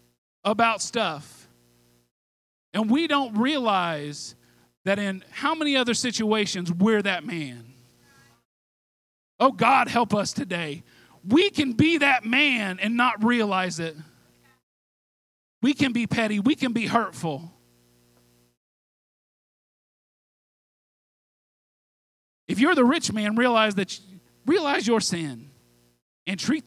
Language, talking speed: English, 110 wpm